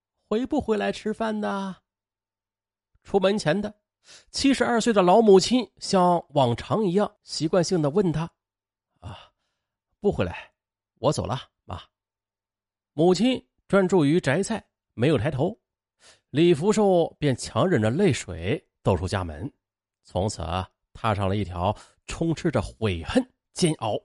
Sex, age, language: male, 30-49, Chinese